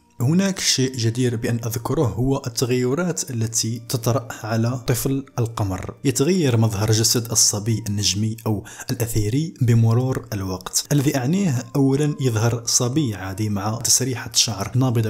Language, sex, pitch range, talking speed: Arabic, male, 110-135 Hz, 125 wpm